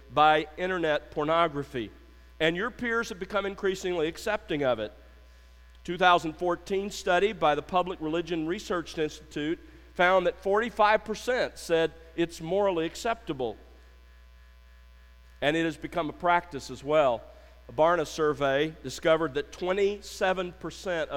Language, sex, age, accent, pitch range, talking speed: English, male, 50-69, American, 130-190 Hz, 115 wpm